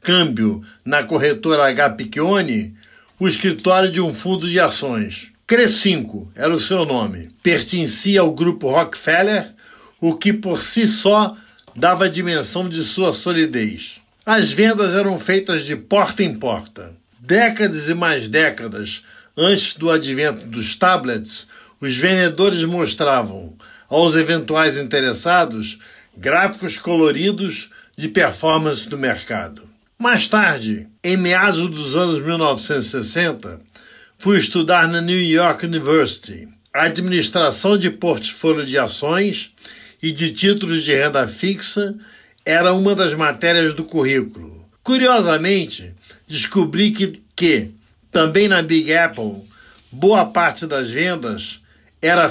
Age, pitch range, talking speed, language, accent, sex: 60-79, 145-195 Hz, 120 wpm, Portuguese, Brazilian, male